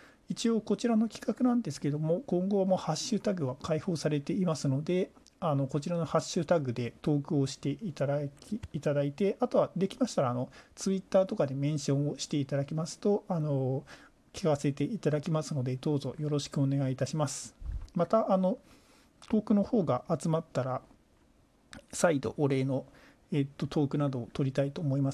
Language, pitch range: Japanese, 135-185 Hz